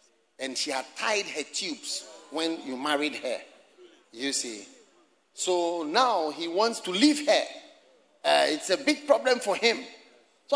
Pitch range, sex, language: 195-305 Hz, male, English